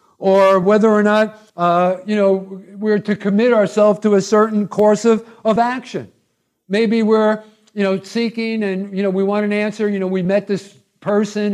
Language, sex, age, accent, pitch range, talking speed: English, male, 60-79, American, 195-230 Hz, 185 wpm